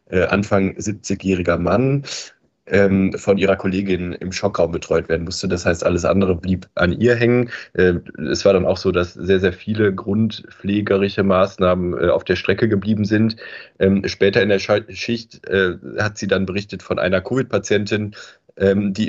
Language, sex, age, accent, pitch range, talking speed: German, male, 20-39, German, 95-100 Hz, 150 wpm